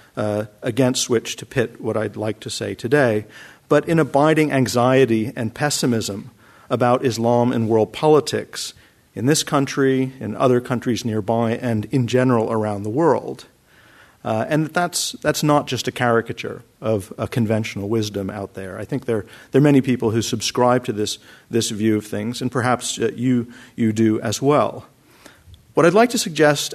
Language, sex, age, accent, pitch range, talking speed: English, male, 50-69, American, 110-135 Hz, 175 wpm